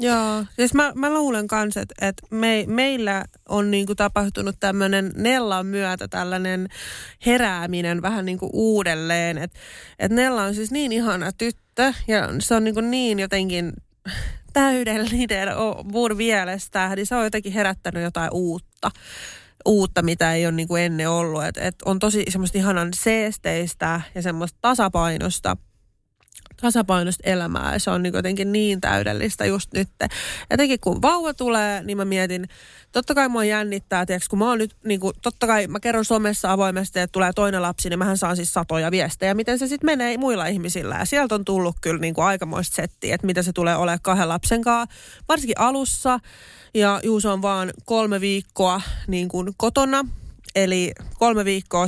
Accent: native